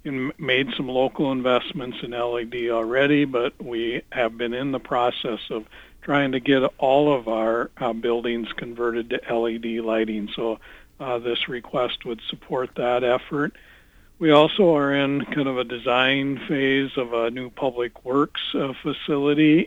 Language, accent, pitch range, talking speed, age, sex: English, American, 120-140 Hz, 160 wpm, 60-79, male